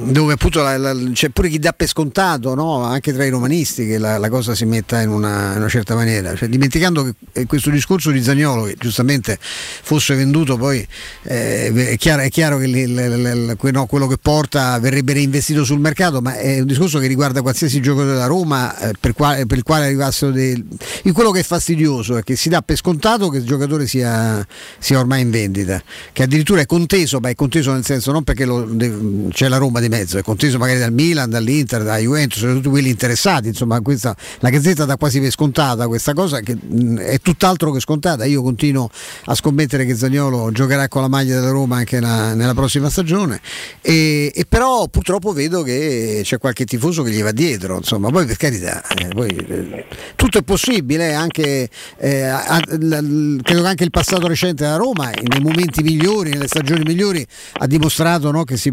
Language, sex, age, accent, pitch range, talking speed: Italian, male, 50-69, native, 125-155 Hz, 185 wpm